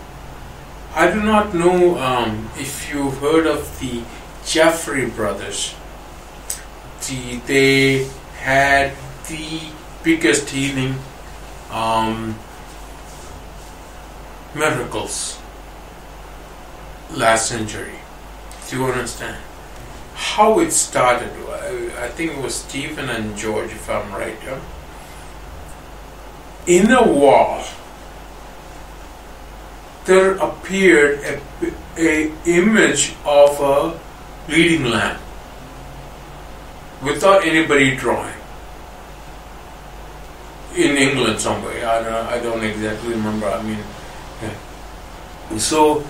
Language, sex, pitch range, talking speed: English, male, 110-155 Hz, 85 wpm